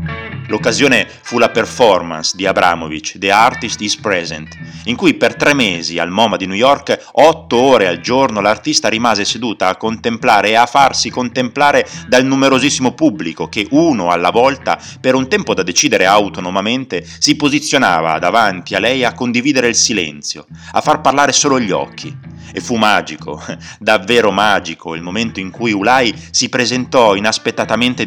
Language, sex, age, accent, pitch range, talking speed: Italian, male, 30-49, native, 85-125 Hz, 160 wpm